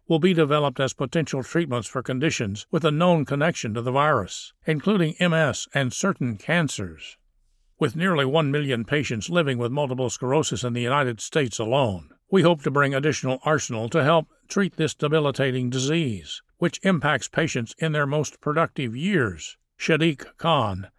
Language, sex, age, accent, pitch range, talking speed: English, male, 60-79, American, 125-165 Hz, 160 wpm